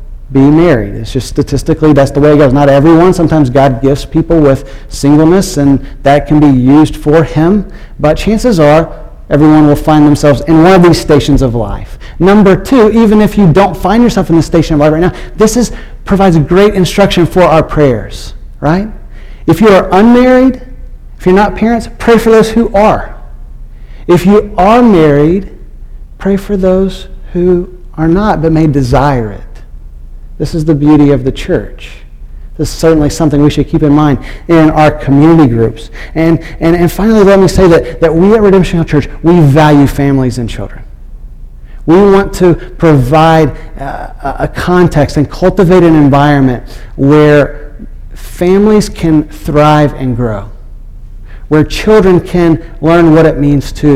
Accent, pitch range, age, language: American, 140-180 Hz, 40-59, English